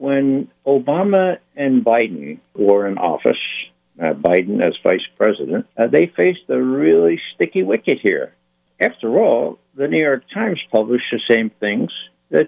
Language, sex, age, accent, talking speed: English, male, 60-79, American, 150 wpm